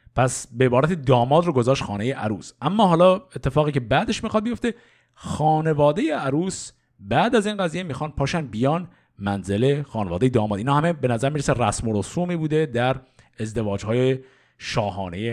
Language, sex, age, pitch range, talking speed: Persian, male, 50-69, 120-160 Hz, 155 wpm